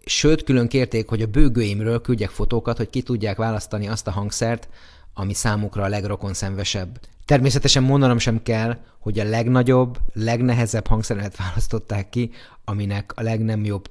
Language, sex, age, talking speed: Hungarian, male, 30-49, 150 wpm